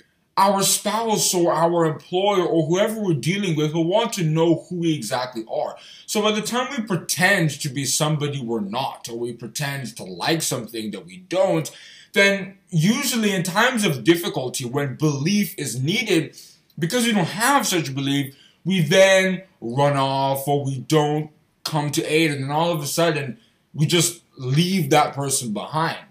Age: 20-39